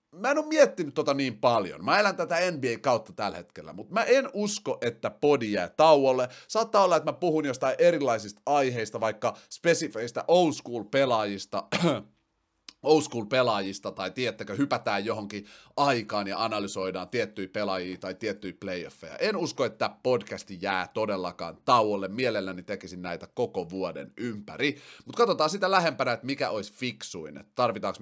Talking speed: 150 wpm